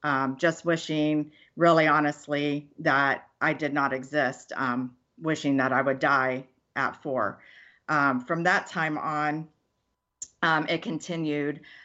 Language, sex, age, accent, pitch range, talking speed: English, female, 40-59, American, 135-155 Hz, 130 wpm